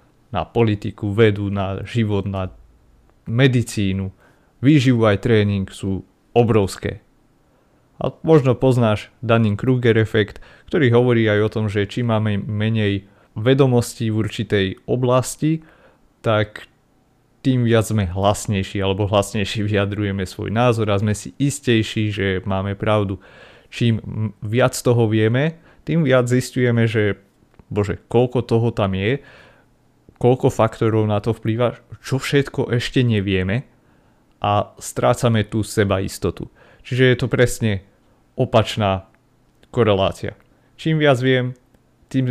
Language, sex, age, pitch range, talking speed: Slovak, male, 30-49, 100-125 Hz, 115 wpm